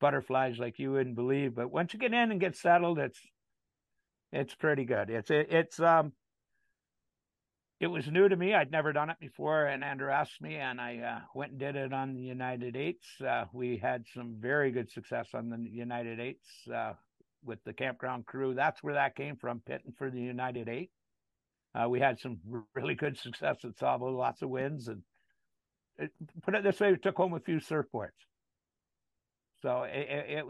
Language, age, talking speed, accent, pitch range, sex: English, 60-79, 190 wpm, American, 125-160 Hz, male